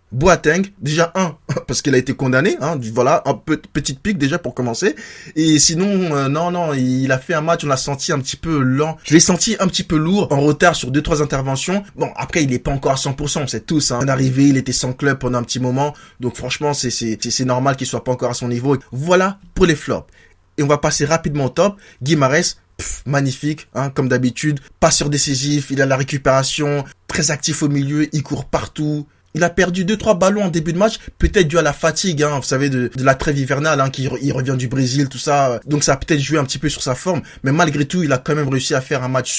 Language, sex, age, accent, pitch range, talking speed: French, male, 20-39, French, 130-160 Hz, 255 wpm